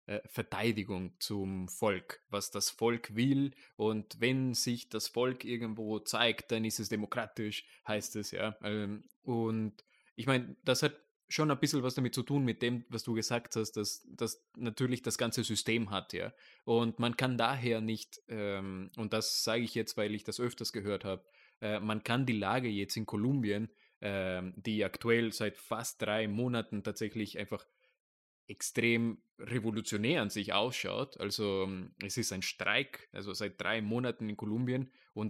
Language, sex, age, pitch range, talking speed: German, male, 20-39, 105-120 Hz, 160 wpm